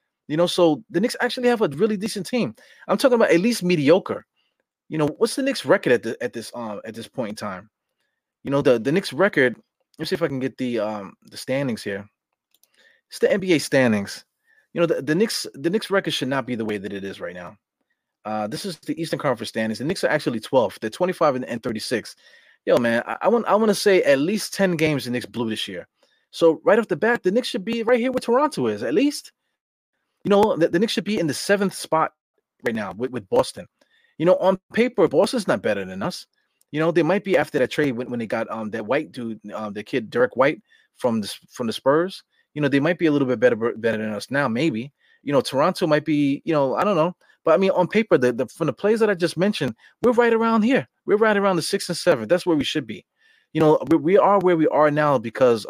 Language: English